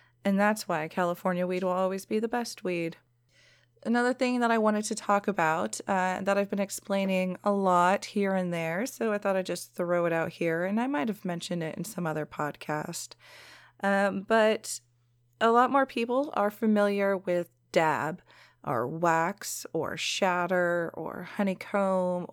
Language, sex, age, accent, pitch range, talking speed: English, female, 30-49, American, 170-215 Hz, 170 wpm